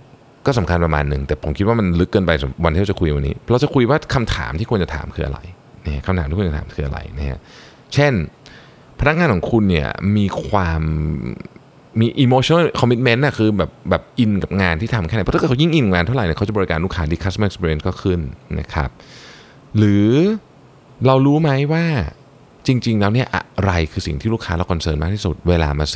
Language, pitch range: Thai, 85-130 Hz